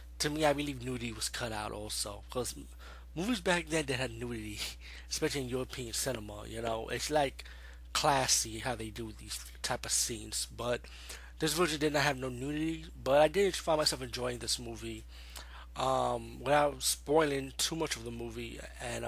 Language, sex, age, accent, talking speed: English, male, 20-39, American, 180 wpm